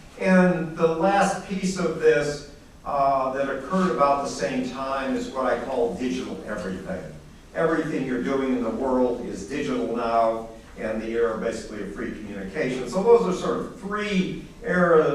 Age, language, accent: 50-69, English, American